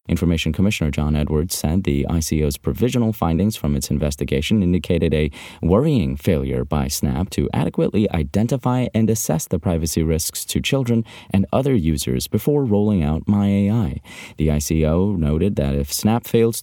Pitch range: 80-110 Hz